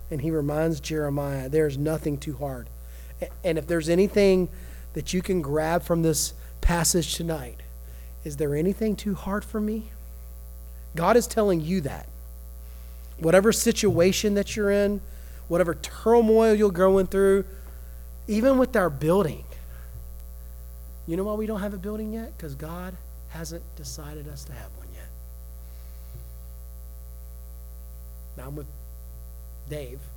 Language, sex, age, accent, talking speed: English, male, 30-49, American, 135 wpm